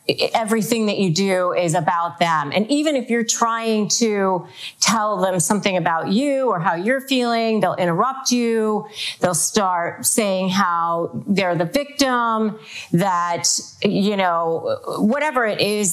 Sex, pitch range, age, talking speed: female, 175-210 Hz, 30-49, 145 wpm